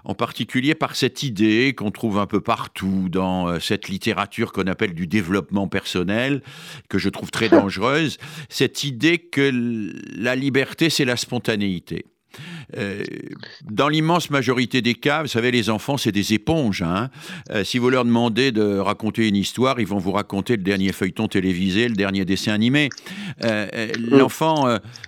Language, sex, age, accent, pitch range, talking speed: French, male, 50-69, French, 105-140 Hz, 155 wpm